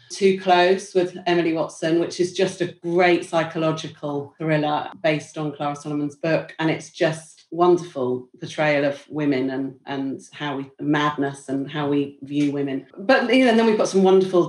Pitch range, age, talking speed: 155-185 Hz, 40-59, 165 wpm